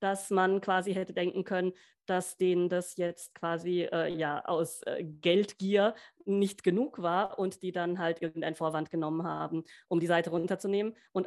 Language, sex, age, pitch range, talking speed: German, female, 30-49, 170-205 Hz, 170 wpm